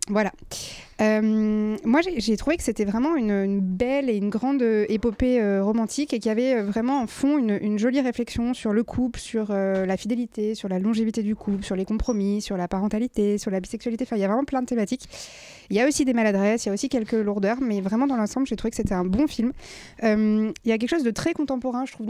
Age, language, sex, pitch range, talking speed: 20-39, French, female, 205-245 Hz, 245 wpm